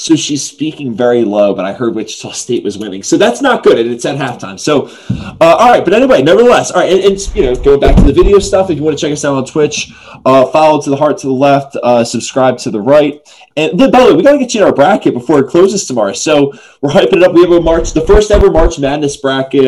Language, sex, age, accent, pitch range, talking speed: English, male, 20-39, American, 120-155 Hz, 285 wpm